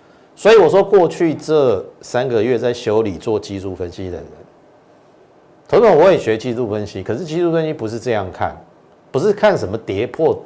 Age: 50-69